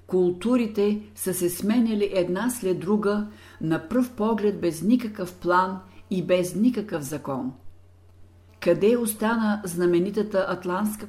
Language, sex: Bulgarian, female